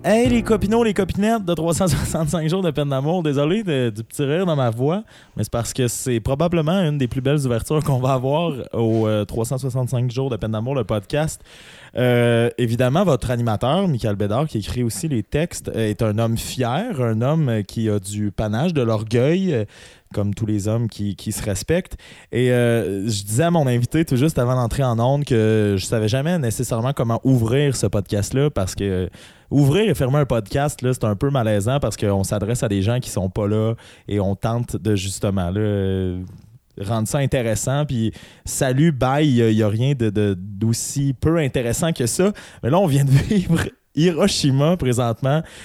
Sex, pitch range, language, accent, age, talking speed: male, 105-140 Hz, French, Canadian, 20-39, 195 wpm